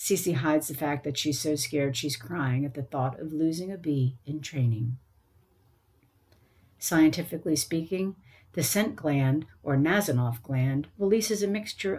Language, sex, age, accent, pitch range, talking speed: English, female, 50-69, American, 130-175 Hz, 150 wpm